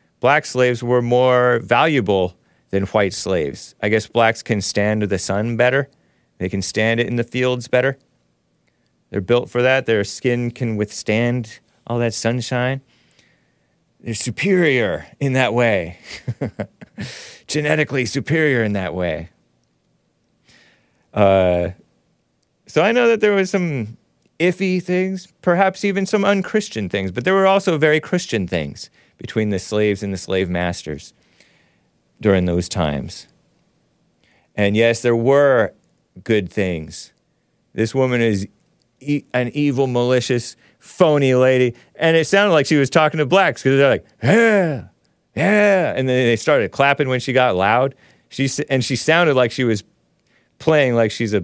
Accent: American